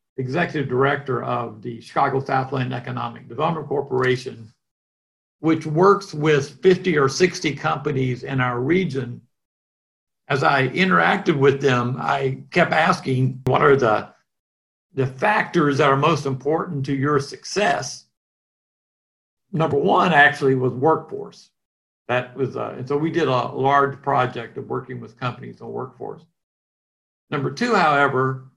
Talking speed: 130 wpm